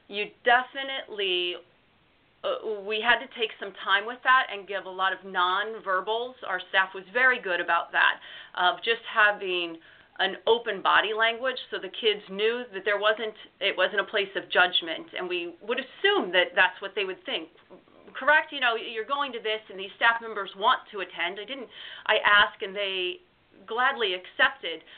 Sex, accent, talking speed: female, American, 185 wpm